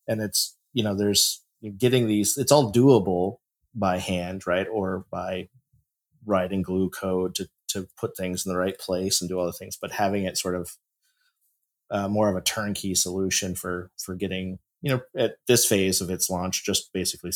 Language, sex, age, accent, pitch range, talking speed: English, male, 30-49, American, 95-115 Hz, 190 wpm